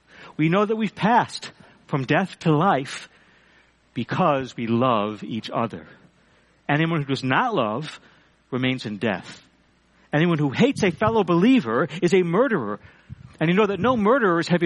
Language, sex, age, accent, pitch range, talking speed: English, male, 60-79, American, 130-200 Hz, 155 wpm